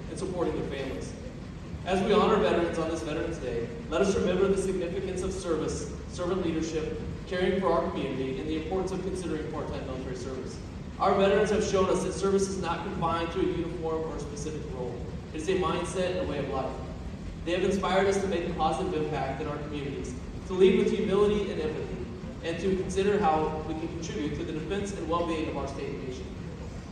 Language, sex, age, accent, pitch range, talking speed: English, male, 30-49, American, 155-190 Hz, 205 wpm